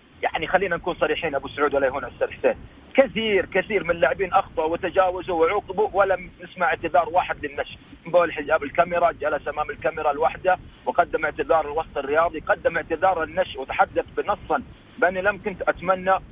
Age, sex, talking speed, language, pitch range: 40-59, male, 150 wpm, English, 150-185 Hz